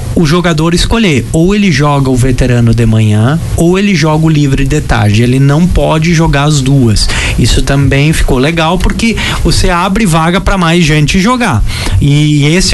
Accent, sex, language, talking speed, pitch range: Brazilian, male, Portuguese, 175 wpm, 135-190 Hz